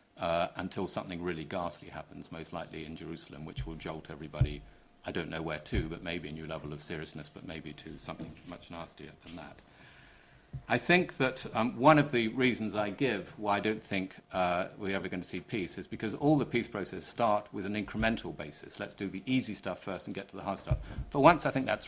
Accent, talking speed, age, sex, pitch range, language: British, 230 wpm, 50-69, male, 90-115 Hz, English